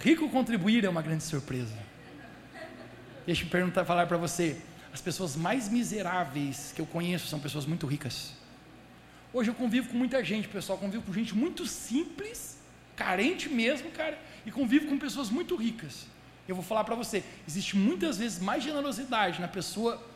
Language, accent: Portuguese, Brazilian